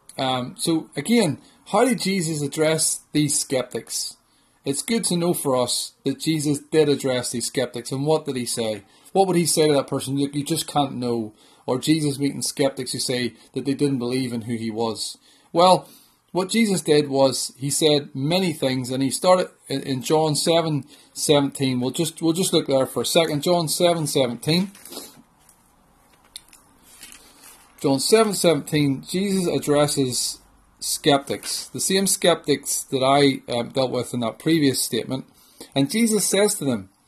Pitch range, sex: 130-175 Hz, male